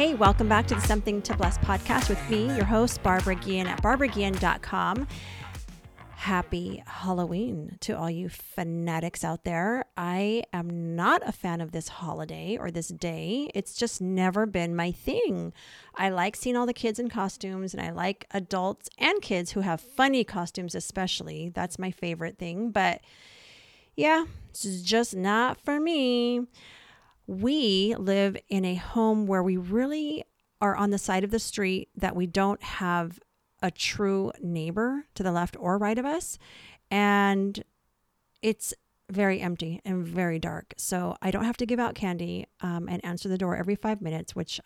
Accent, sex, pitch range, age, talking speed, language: American, female, 175-220 Hz, 40-59, 170 wpm, English